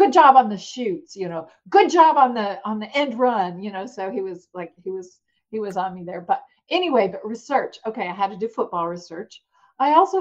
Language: English